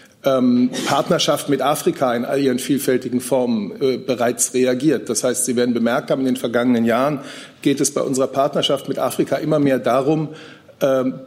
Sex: male